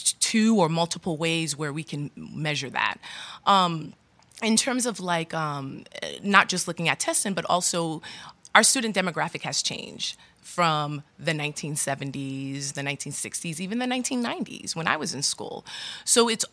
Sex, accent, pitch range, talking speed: female, American, 160-215 Hz, 155 wpm